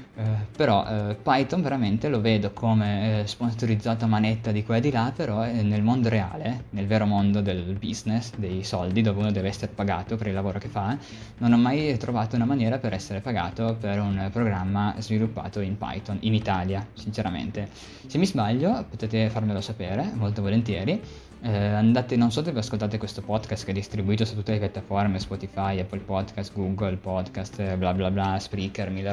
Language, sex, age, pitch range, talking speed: Italian, male, 20-39, 100-120 Hz, 180 wpm